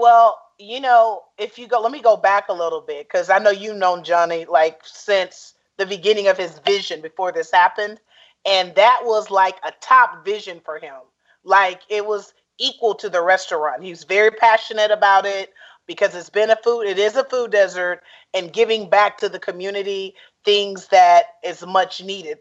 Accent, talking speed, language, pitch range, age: American, 190 wpm, English, 185-215 Hz, 30-49